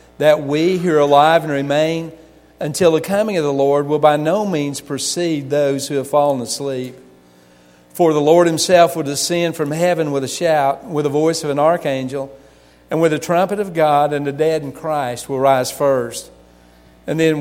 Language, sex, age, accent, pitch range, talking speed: English, male, 50-69, American, 130-160 Hz, 195 wpm